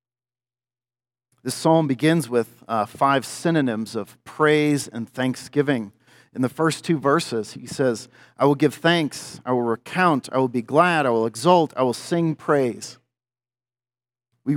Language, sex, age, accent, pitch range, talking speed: English, male, 40-59, American, 120-150 Hz, 150 wpm